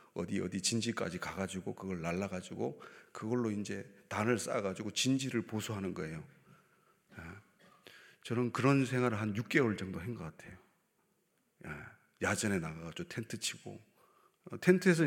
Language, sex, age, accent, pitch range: Korean, male, 30-49, native, 100-150 Hz